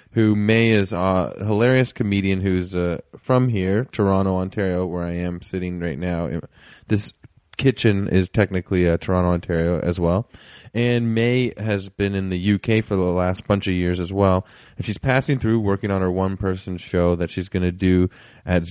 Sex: male